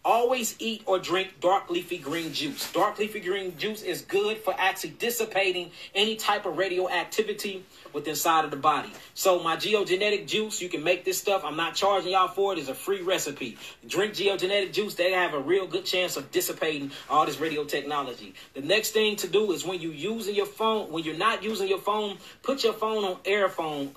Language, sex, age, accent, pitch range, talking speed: English, male, 30-49, American, 180-230 Hz, 205 wpm